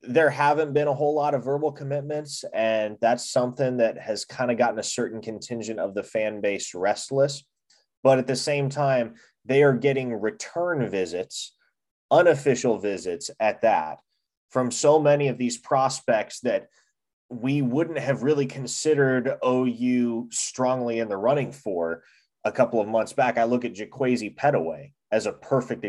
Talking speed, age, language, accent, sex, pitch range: 160 wpm, 20-39, English, American, male, 115-140 Hz